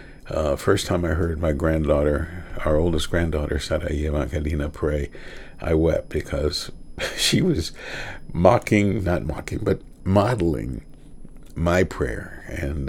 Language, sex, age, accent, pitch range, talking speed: English, male, 60-79, American, 75-95 Hz, 115 wpm